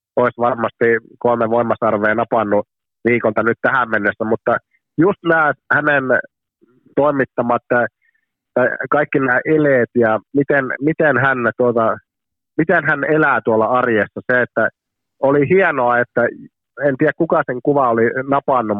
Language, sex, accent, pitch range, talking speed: Finnish, male, native, 110-140 Hz, 125 wpm